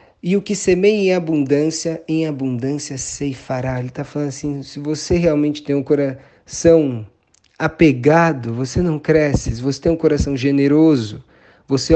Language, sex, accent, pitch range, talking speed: Portuguese, male, Brazilian, 120-145 Hz, 150 wpm